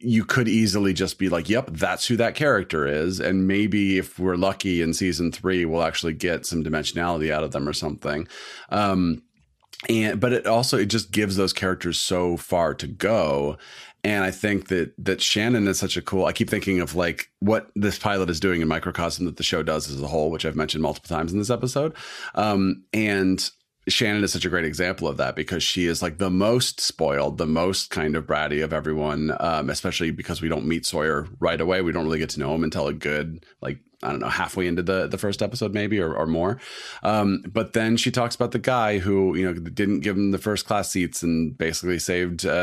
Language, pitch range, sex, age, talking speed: English, 85-105 Hz, male, 40-59, 225 wpm